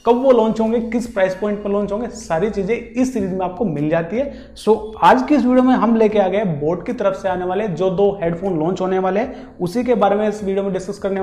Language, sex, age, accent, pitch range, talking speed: Hindi, male, 30-49, native, 170-215 Hz, 285 wpm